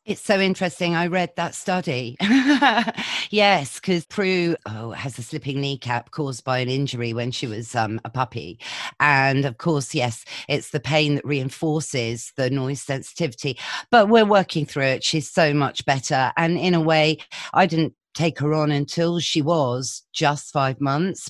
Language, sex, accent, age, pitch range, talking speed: English, female, British, 40-59, 120-150 Hz, 170 wpm